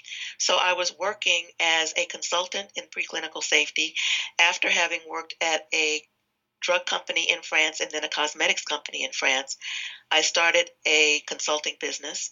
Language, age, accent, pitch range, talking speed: English, 40-59, American, 150-165 Hz, 150 wpm